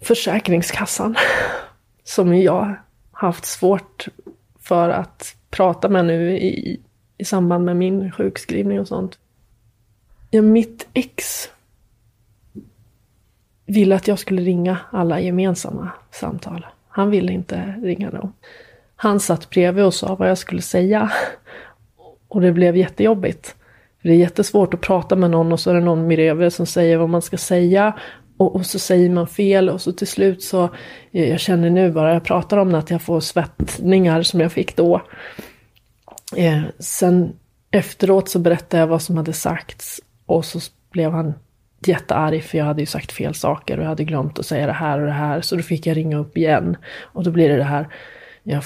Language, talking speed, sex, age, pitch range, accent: Swedish, 175 wpm, female, 30-49, 155-185 Hz, native